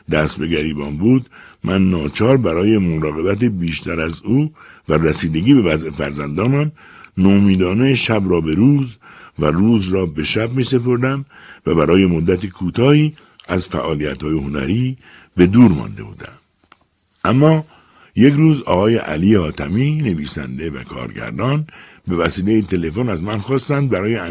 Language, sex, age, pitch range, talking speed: Persian, male, 60-79, 85-130 Hz, 140 wpm